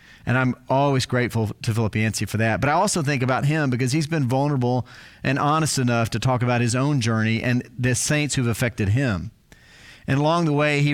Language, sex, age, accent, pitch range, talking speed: English, male, 40-59, American, 115-140 Hz, 215 wpm